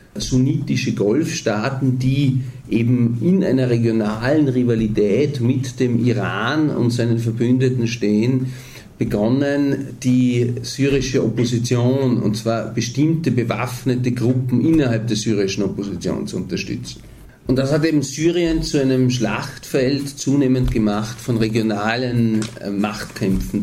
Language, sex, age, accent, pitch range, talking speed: German, male, 50-69, German, 110-130 Hz, 110 wpm